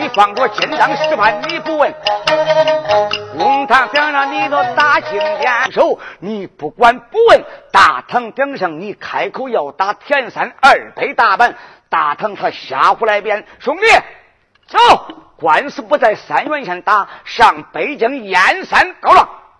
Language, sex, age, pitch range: Chinese, male, 50-69, 180-295 Hz